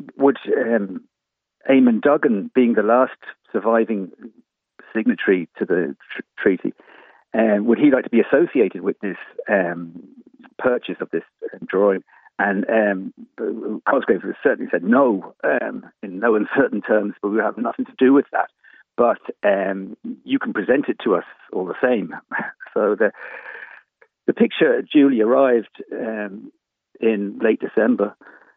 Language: English